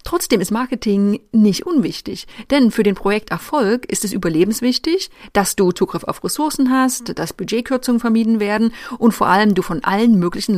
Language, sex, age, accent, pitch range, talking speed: German, female, 30-49, German, 190-245 Hz, 165 wpm